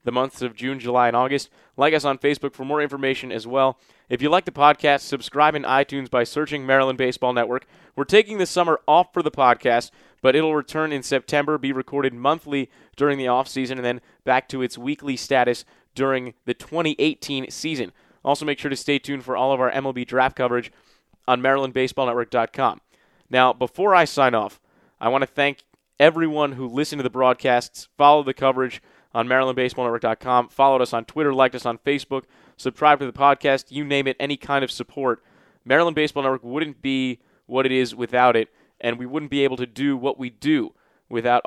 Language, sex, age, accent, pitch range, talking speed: English, male, 30-49, American, 125-140 Hz, 195 wpm